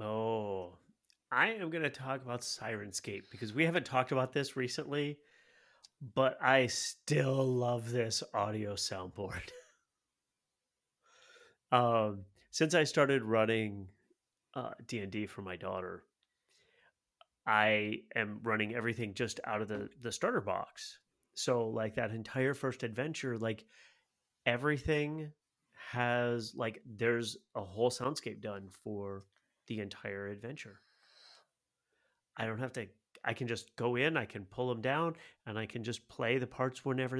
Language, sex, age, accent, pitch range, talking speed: English, male, 30-49, American, 100-130 Hz, 135 wpm